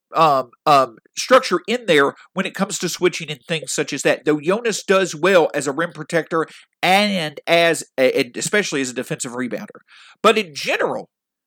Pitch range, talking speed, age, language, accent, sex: 165-225 Hz, 180 wpm, 50-69, English, American, male